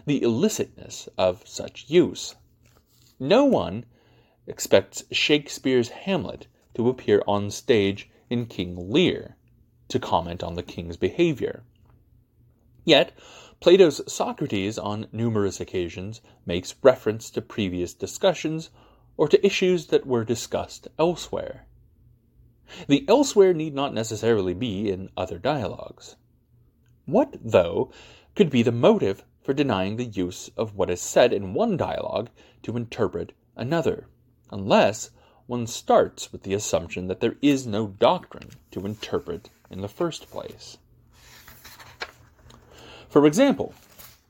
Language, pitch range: English, 100-130 Hz